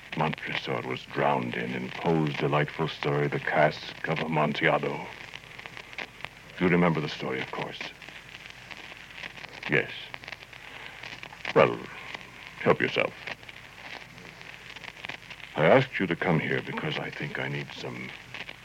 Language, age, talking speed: English, 60-79, 115 wpm